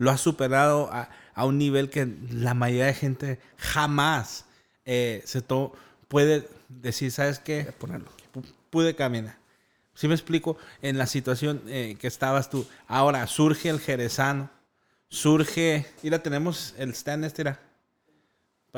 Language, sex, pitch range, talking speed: Spanish, male, 130-155 Hz, 145 wpm